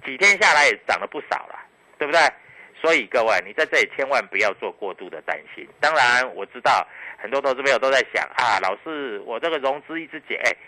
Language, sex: Chinese, male